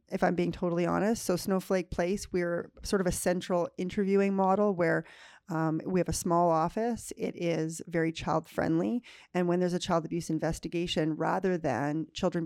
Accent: American